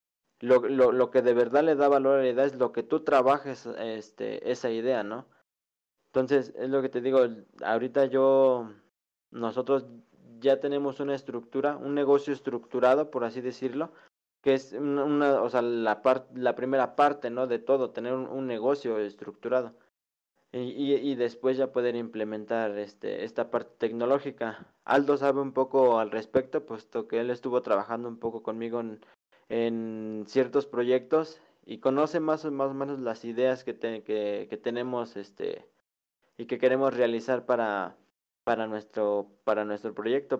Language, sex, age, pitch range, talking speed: Spanish, male, 20-39, 115-135 Hz, 170 wpm